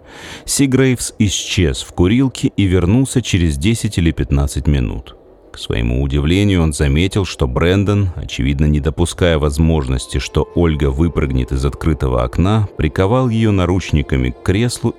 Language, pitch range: Russian, 70-95 Hz